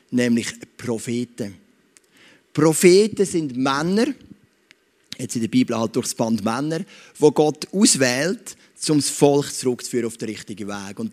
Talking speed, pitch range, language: 150 wpm, 140-185 Hz, English